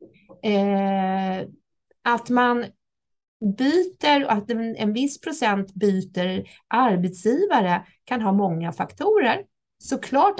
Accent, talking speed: native, 90 wpm